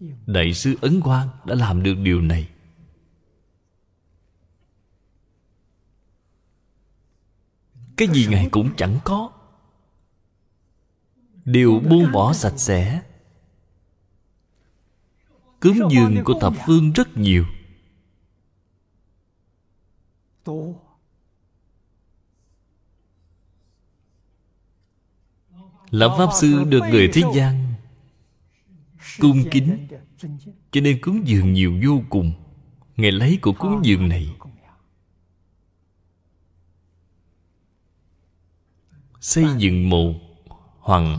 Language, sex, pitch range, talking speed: Vietnamese, male, 85-130 Hz, 75 wpm